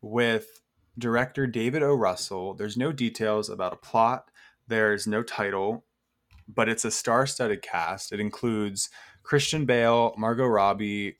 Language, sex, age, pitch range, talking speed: English, male, 20-39, 105-125 Hz, 140 wpm